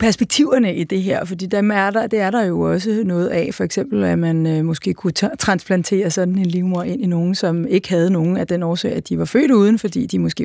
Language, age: Danish, 30-49